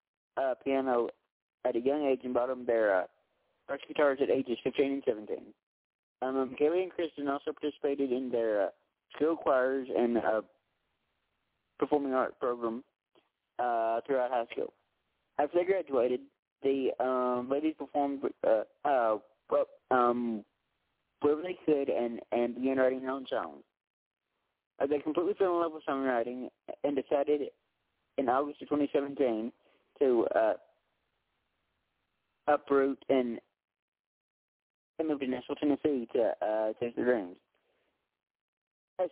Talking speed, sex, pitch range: 135 wpm, male, 125-145 Hz